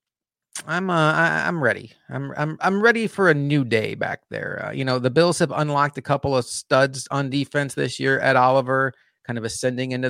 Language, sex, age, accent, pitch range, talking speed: English, male, 30-49, American, 120-145 Hz, 215 wpm